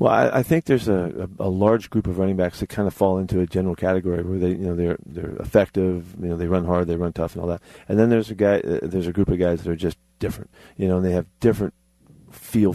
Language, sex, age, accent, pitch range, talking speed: English, male, 40-59, American, 90-100 Hz, 285 wpm